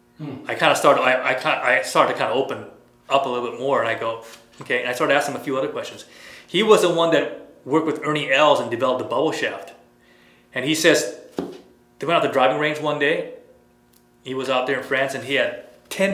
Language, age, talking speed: English, 30-49, 240 wpm